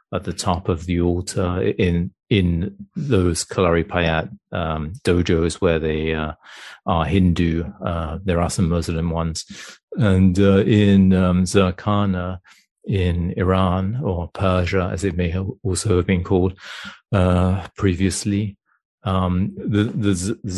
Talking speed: 135 wpm